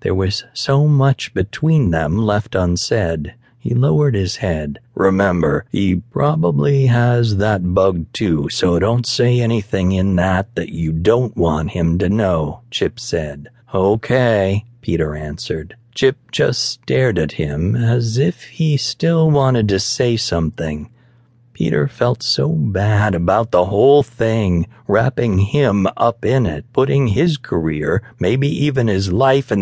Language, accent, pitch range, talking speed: English, American, 90-125 Hz, 145 wpm